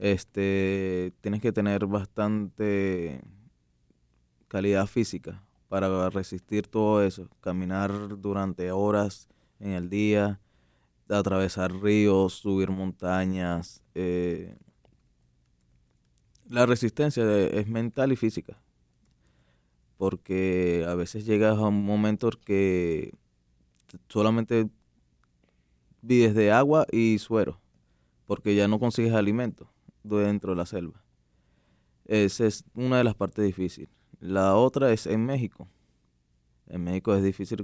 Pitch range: 85-105 Hz